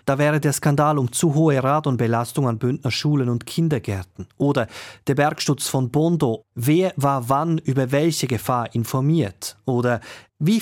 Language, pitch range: German, 115-155 Hz